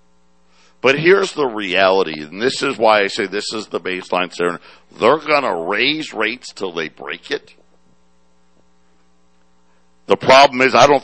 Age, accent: 60-79, American